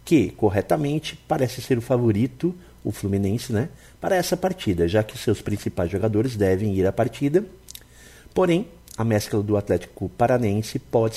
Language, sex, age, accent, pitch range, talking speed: Portuguese, male, 50-69, Brazilian, 100-140 Hz, 145 wpm